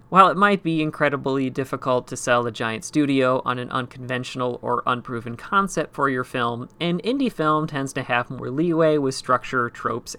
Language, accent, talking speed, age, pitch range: English, American, 185 wpm, 30-49, 125-155 Hz